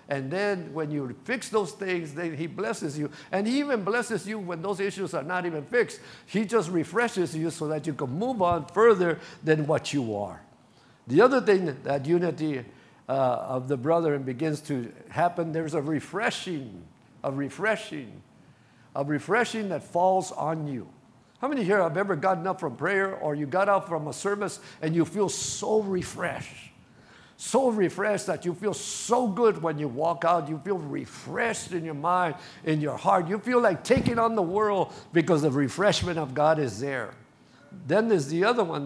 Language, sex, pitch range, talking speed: English, male, 150-200 Hz, 190 wpm